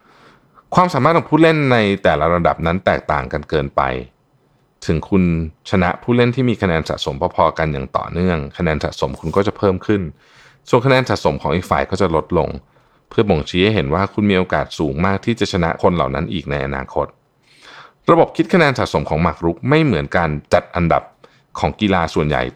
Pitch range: 80-105 Hz